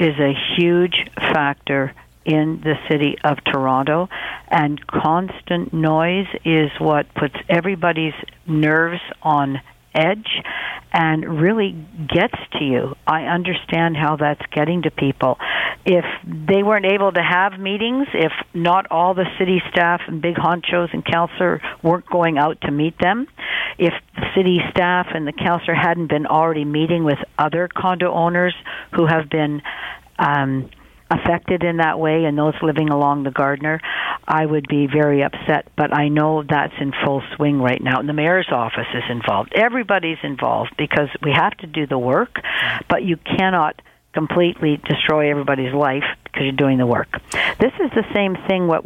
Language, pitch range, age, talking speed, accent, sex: English, 145-175 Hz, 60-79, 160 wpm, American, female